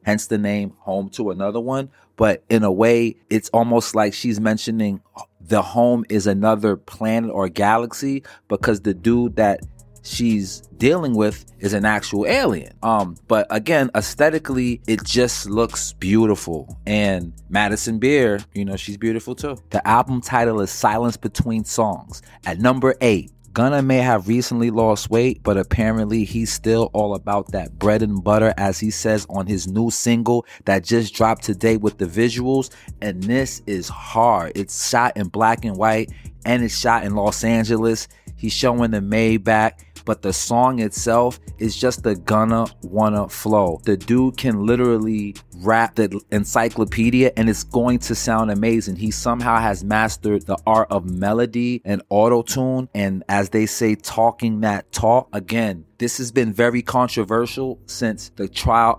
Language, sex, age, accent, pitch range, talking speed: English, male, 30-49, American, 105-120 Hz, 160 wpm